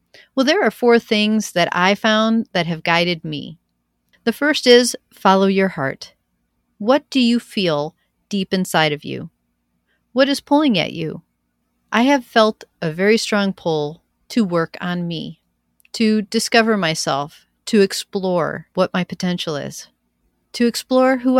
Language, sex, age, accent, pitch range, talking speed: English, female, 40-59, American, 165-230 Hz, 150 wpm